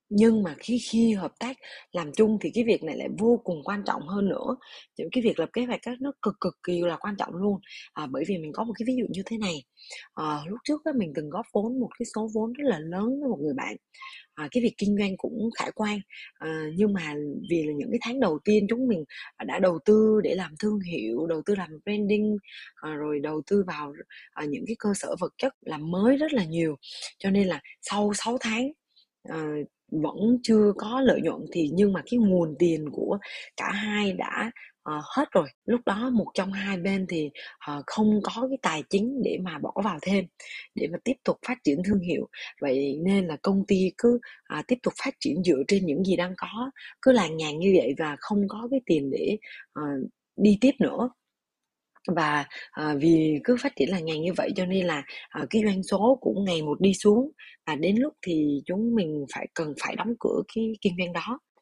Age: 20-39